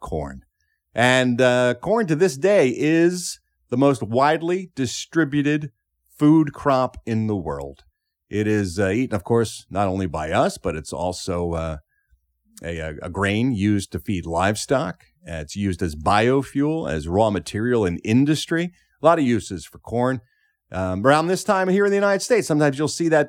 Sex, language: male, English